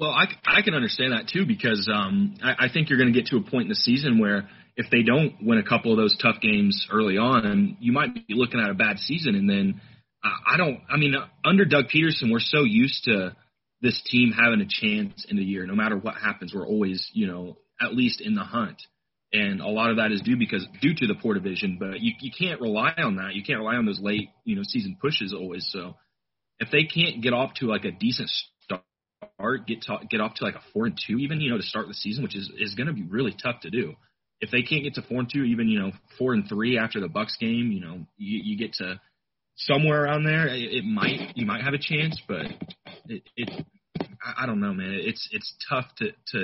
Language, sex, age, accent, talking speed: English, male, 30-49, American, 255 wpm